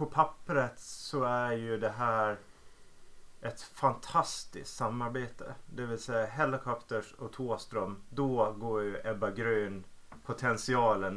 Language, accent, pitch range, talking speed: Swedish, Norwegian, 110-140 Hz, 105 wpm